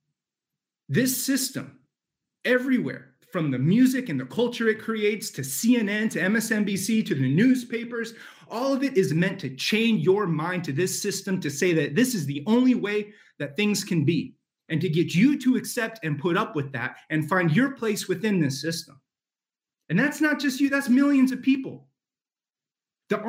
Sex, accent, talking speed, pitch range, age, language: male, American, 180 wpm, 160-225 Hz, 30-49, English